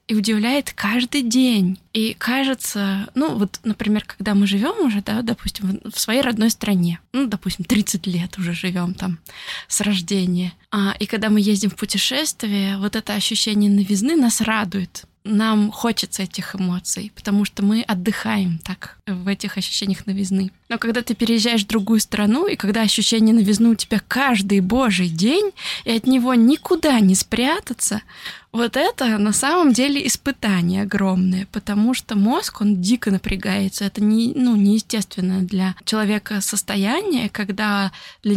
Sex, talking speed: female, 155 wpm